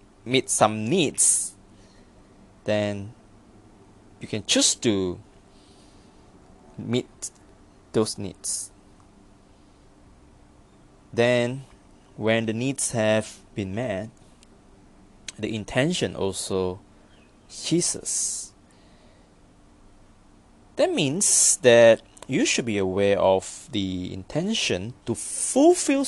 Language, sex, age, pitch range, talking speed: English, male, 20-39, 95-115 Hz, 80 wpm